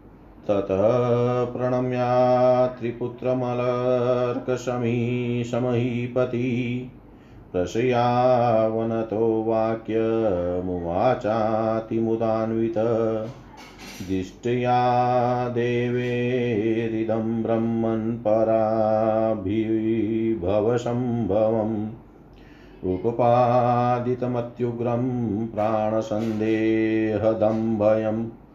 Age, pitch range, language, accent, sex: 40-59, 110-125 Hz, Hindi, native, male